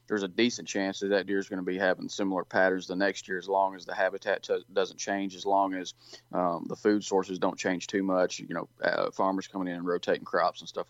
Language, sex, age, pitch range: English, male, 20-39, 95-105 Hz